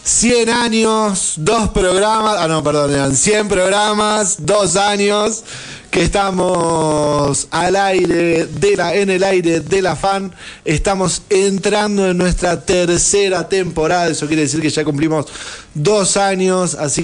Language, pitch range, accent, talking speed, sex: Spanish, 140-185 Hz, Argentinian, 135 wpm, male